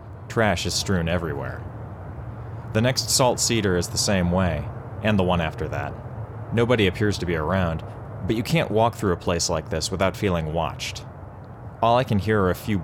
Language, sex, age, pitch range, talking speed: English, male, 30-49, 85-115 Hz, 190 wpm